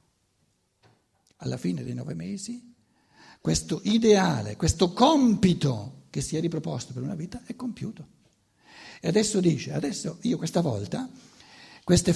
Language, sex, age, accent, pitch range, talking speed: Italian, male, 60-79, native, 135-210 Hz, 130 wpm